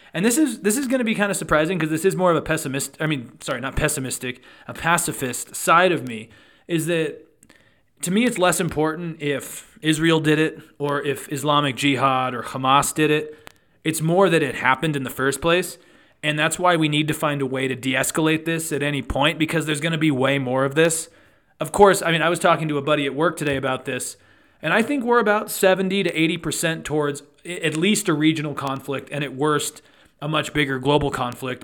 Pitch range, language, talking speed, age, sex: 140-170 Hz, English, 225 wpm, 30-49, male